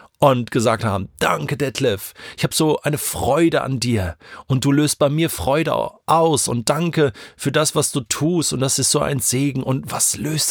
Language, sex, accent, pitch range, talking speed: German, male, German, 100-140 Hz, 200 wpm